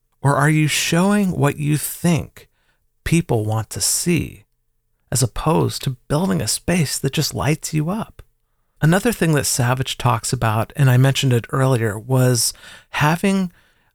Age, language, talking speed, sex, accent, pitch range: 40-59, English, 150 wpm, male, American, 120-150 Hz